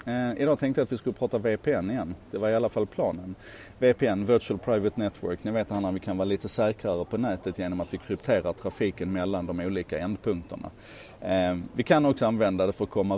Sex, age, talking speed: male, 30-49, 210 wpm